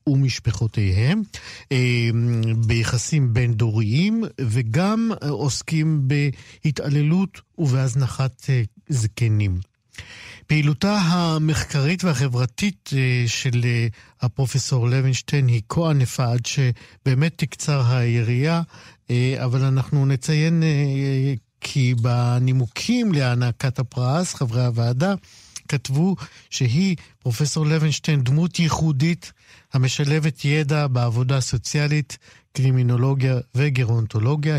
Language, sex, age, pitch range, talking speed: Hebrew, male, 50-69, 115-145 Hz, 75 wpm